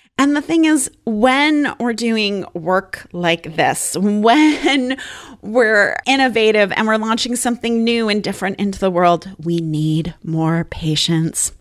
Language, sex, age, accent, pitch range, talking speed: English, female, 30-49, American, 170-220 Hz, 140 wpm